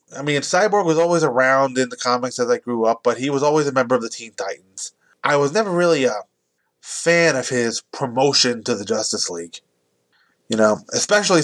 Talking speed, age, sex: 205 wpm, 20-39, male